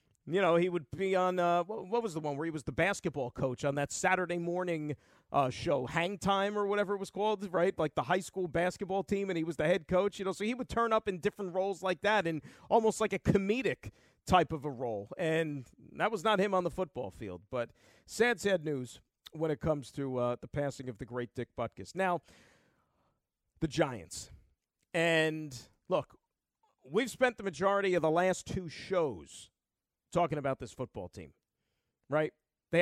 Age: 40-59